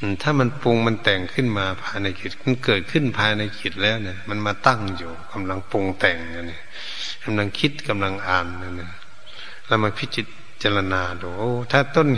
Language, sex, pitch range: Thai, male, 100-120 Hz